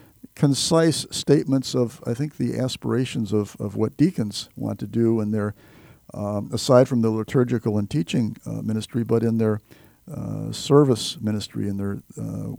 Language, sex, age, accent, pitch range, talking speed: English, male, 50-69, American, 110-140 Hz, 160 wpm